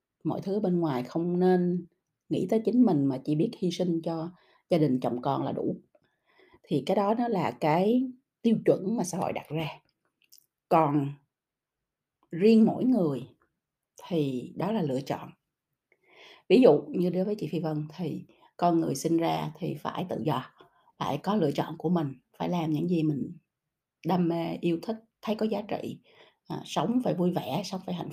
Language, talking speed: Vietnamese, 185 wpm